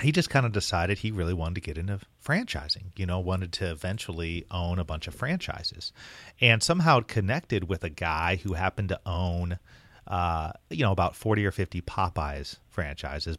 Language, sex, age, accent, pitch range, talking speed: English, male, 30-49, American, 85-110 Hz, 185 wpm